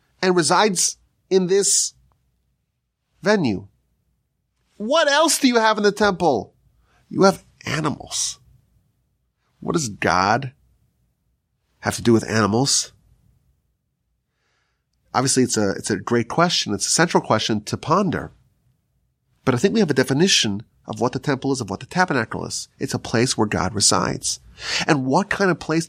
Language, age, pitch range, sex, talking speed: English, 30-49, 120-175 Hz, male, 150 wpm